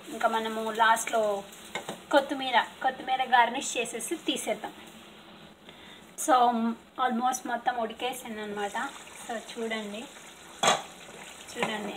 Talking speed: 80 wpm